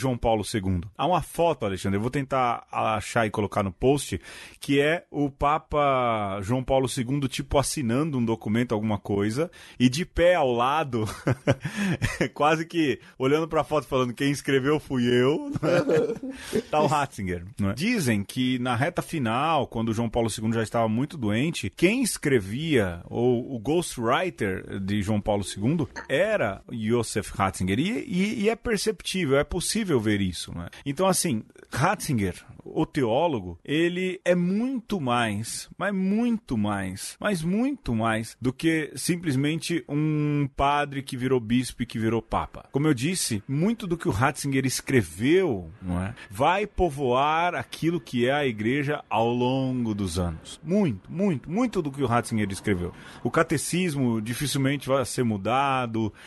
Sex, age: male, 30-49